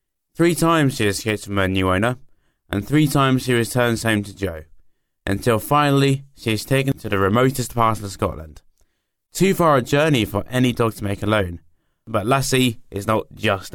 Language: English